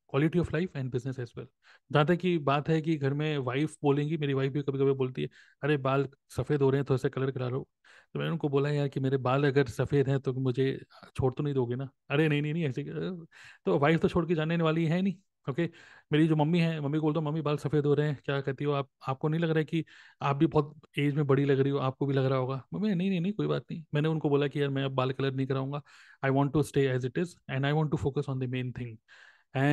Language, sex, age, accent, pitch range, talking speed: Hindi, male, 30-49, native, 135-160 Hz, 275 wpm